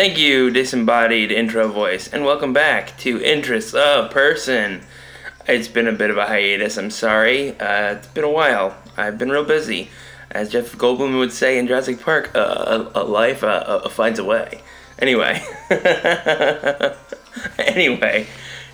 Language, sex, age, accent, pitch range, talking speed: English, male, 20-39, American, 110-130 Hz, 155 wpm